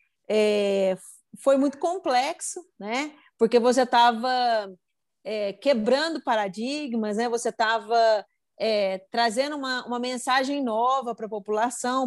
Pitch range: 220-285 Hz